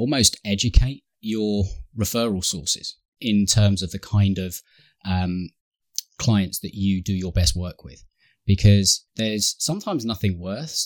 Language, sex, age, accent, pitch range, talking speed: English, male, 20-39, British, 95-110 Hz, 140 wpm